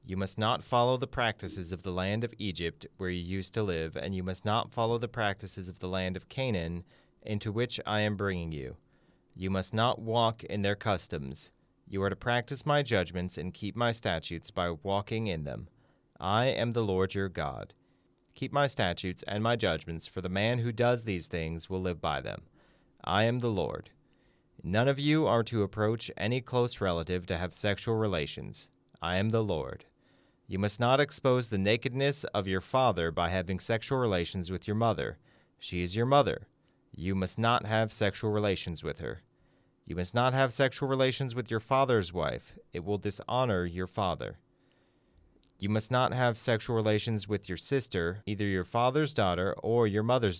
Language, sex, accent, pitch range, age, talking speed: English, male, American, 95-120 Hz, 30-49, 190 wpm